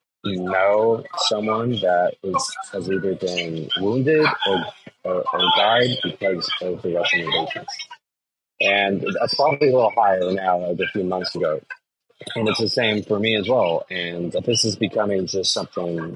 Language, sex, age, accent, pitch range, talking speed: Italian, male, 30-49, American, 85-110 Hz, 170 wpm